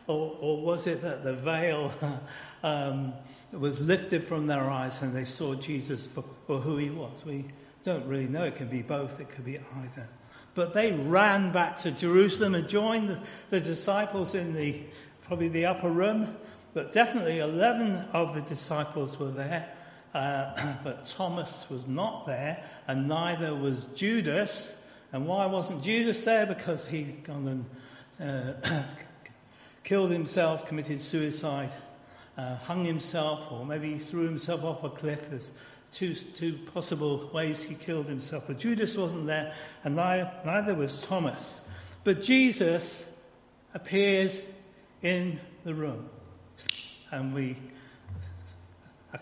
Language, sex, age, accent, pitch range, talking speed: English, male, 60-79, British, 140-180 Hz, 145 wpm